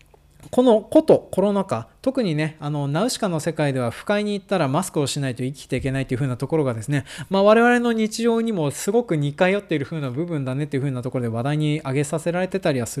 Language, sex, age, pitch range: Japanese, male, 20-39, 135-215 Hz